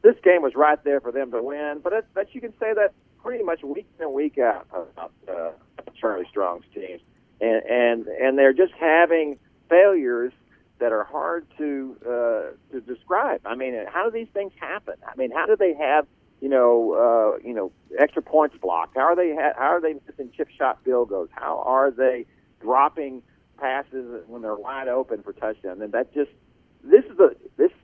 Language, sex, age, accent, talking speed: English, male, 50-69, American, 200 wpm